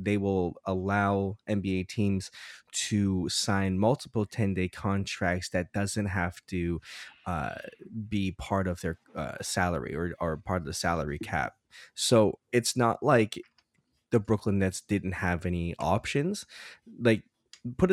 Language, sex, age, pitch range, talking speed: English, male, 20-39, 95-115 Hz, 140 wpm